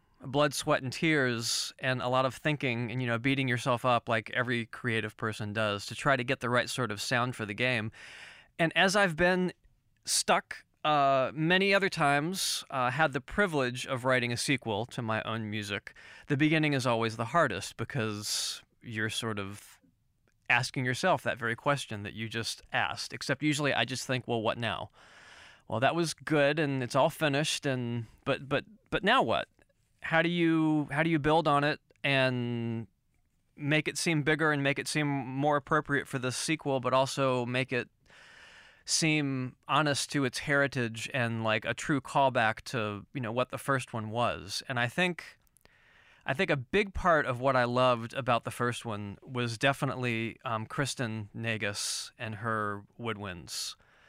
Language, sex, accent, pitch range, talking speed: English, male, American, 115-145 Hz, 180 wpm